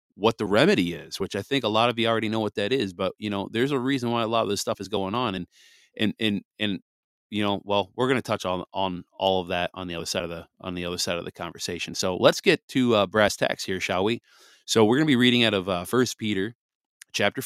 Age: 30-49